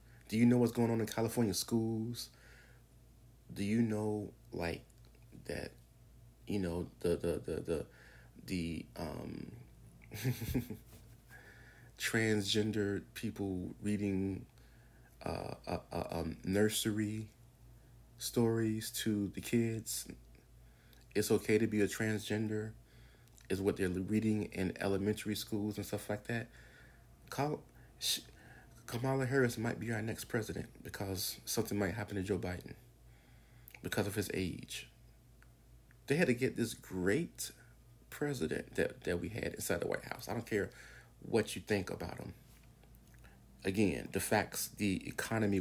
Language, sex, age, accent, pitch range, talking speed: English, male, 30-49, American, 95-115 Hz, 130 wpm